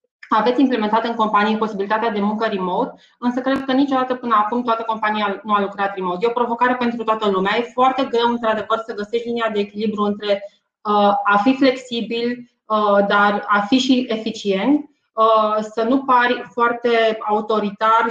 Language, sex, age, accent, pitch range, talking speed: Romanian, female, 20-39, native, 210-245 Hz, 160 wpm